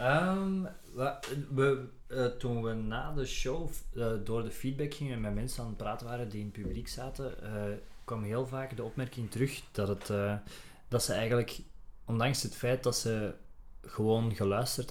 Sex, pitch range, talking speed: male, 105-130 Hz, 185 wpm